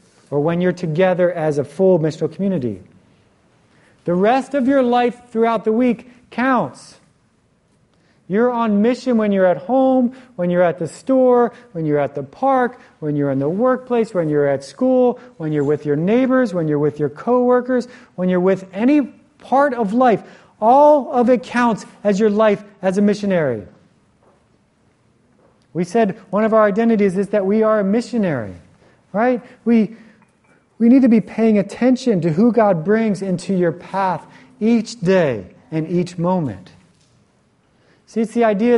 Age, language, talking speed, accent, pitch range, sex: 40-59, English, 165 wpm, American, 170-235 Hz, male